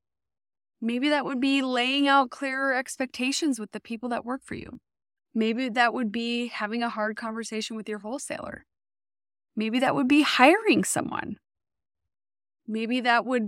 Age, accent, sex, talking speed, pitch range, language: 20-39, American, female, 155 wpm, 200-270 Hz, English